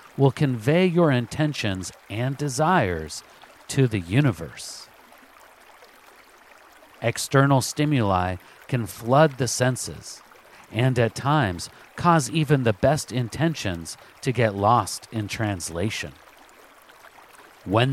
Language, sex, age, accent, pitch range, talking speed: English, male, 50-69, American, 105-140 Hz, 95 wpm